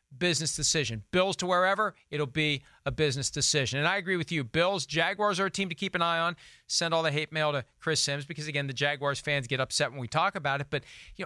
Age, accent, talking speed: 40-59, American, 250 wpm